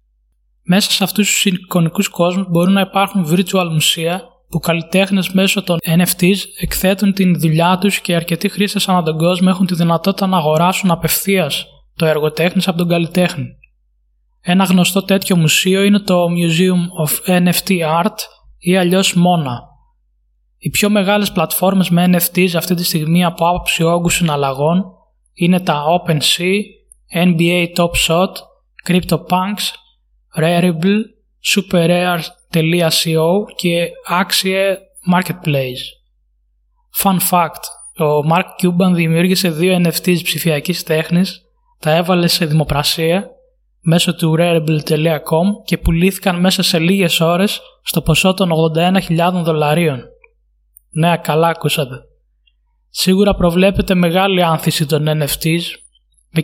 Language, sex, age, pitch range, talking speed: Greek, male, 20-39, 160-185 Hz, 120 wpm